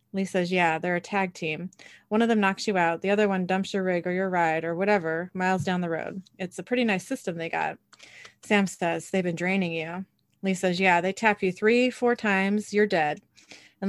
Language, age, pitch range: English, 30-49, 180-225 Hz